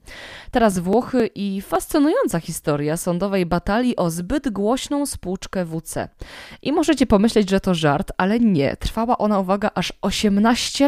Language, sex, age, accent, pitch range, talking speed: Polish, female, 20-39, native, 175-235 Hz, 140 wpm